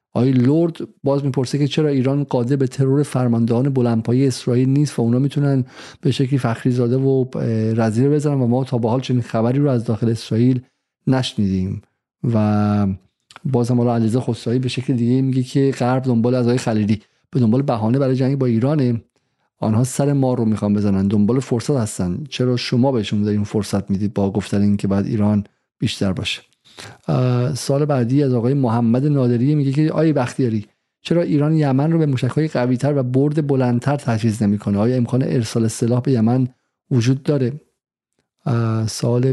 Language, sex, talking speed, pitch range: Persian, male, 170 wpm, 115-135 Hz